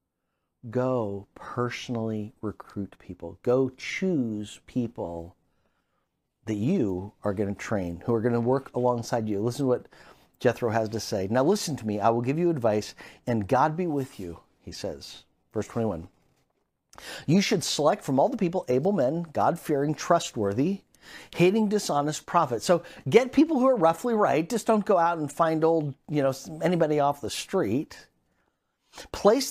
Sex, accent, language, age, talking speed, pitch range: male, American, English, 40-59, 165 wpm, 115-185 Hz